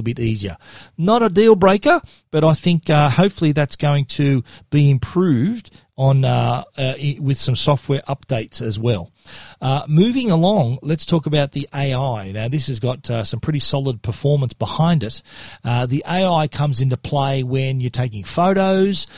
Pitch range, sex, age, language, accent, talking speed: 125-155 Hz, male, 40-59, English, Australian, 170 wpm